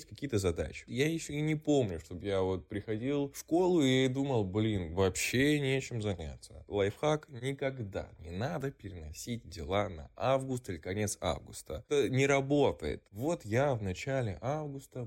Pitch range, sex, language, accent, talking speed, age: 105-140 Hz, male, Russian, native, 150 wpm, 20-39